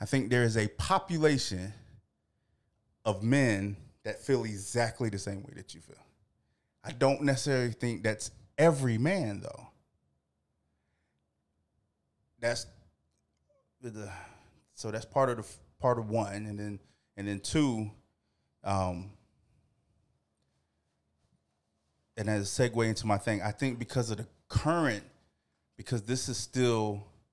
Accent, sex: American, male